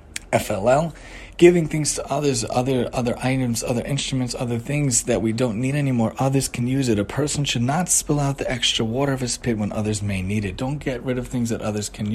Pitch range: 110-135 Hz